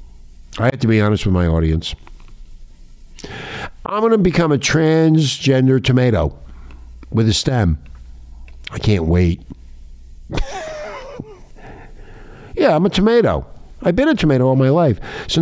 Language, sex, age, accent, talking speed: English, male, 60-79, American, 130 wpm